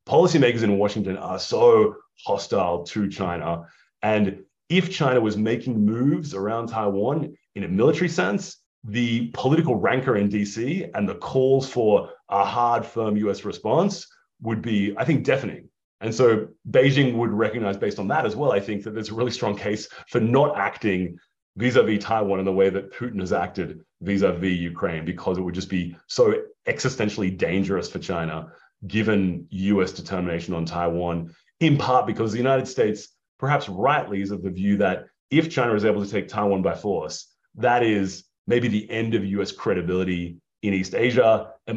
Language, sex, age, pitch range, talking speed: English, male, 30-49, 95-120 Hz, 175 wpm